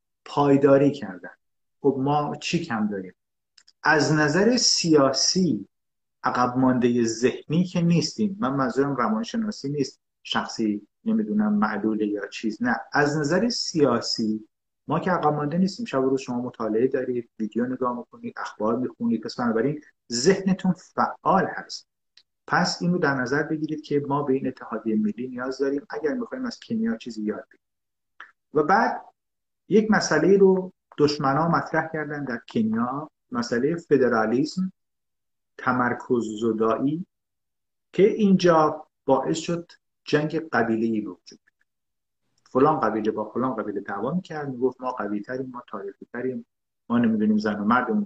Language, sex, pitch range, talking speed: Persian, male, 115-175 Hz, 125 wpm